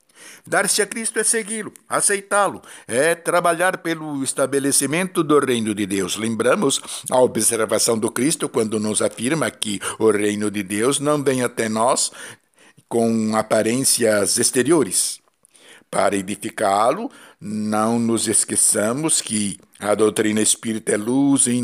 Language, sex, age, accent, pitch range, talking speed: Portuguese, male, 60-79, Brazilian, 110-145 Hz, 130 wpm